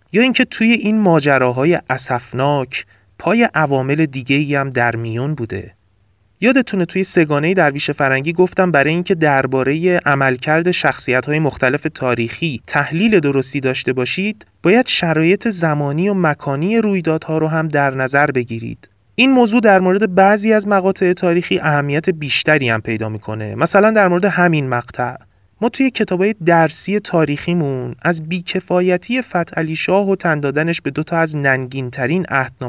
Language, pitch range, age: Persian, 125-175 Hz, 30-49